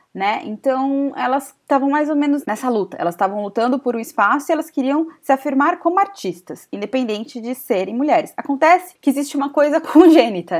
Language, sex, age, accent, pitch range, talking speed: Portuguese, female, 20-39, Brazilian, 190-275 Hz, 180 wpm